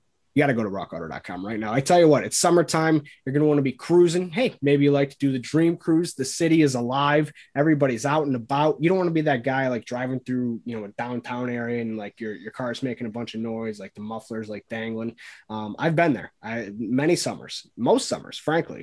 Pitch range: 115-150 Hz